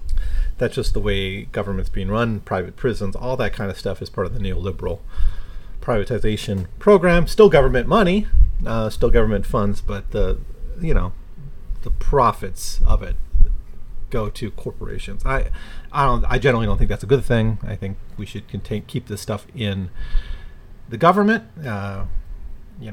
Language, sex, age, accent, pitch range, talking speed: English, male, 30-49, American, 100-120 Hz, 165 wpm